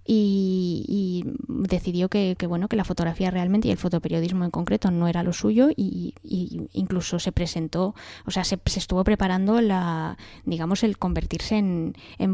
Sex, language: female, English